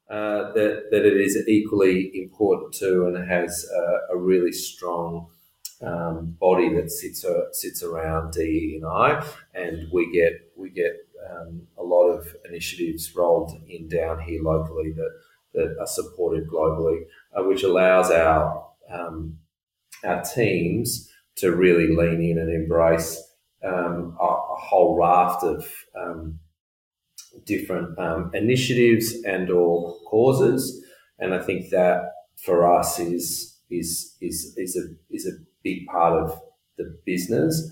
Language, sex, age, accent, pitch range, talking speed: English, male, 30-49, Australian, 85-115 Hz, 135 wpm